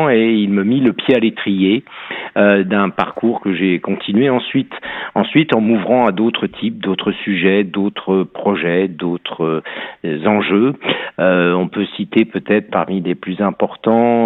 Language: French